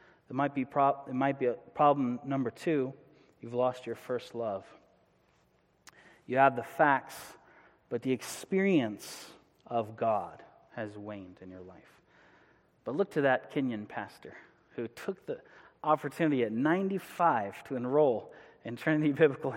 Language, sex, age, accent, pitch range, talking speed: English, male, 30-49, American, 125-155 Hz, 145 wpm